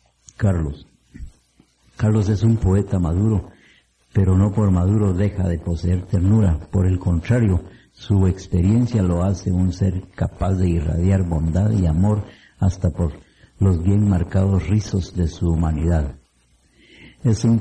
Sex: male